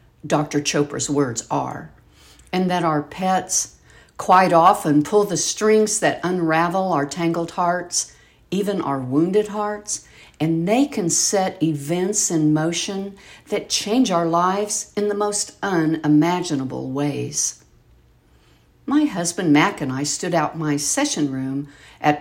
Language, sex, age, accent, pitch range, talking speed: English, female, 60-79, American, 140-180 Hz, 130 wpm